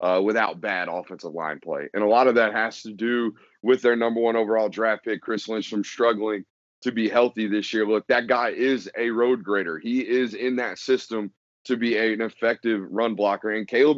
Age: 30-49